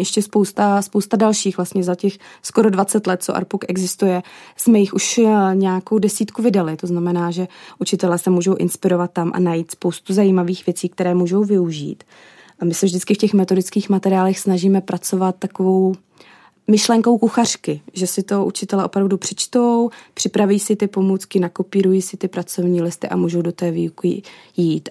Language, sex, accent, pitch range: Czech, female, native, 180-205 Hz